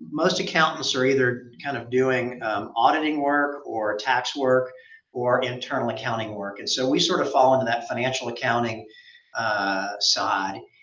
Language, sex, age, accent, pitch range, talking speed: English, male, 40-59, American, 120-150 Hz, 160 wpm